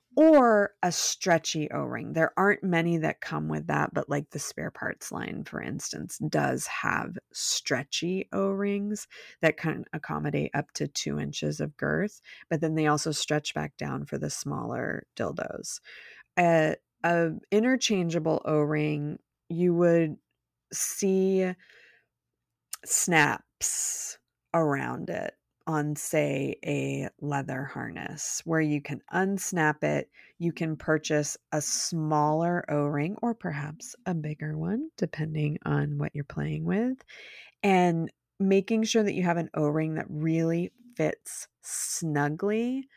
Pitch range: 150-185 Hz